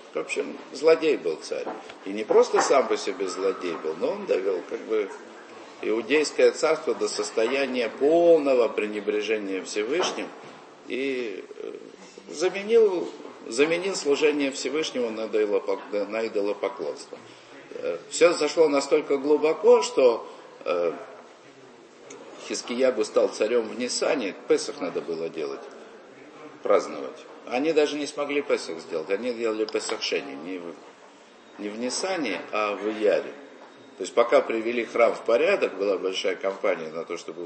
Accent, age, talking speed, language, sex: native, 50-69, 120 wpm, Russian, male